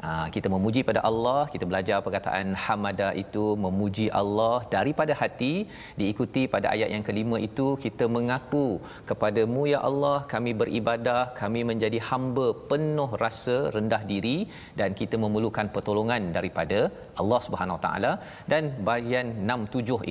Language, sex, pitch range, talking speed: Malayalam, male, 105-125 Hz, 135 wpm